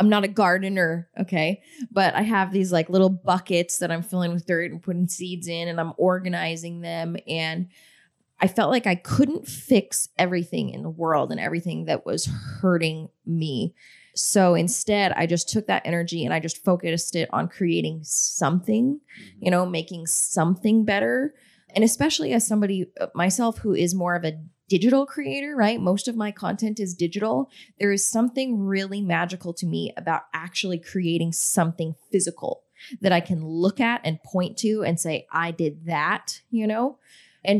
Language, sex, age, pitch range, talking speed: English, female, 20-39, 170-210 Hz, 175 wpm